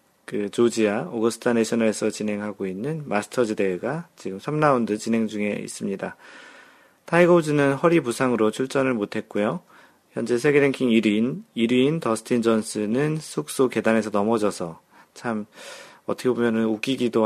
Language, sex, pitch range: Korean, male, 105-135 Hz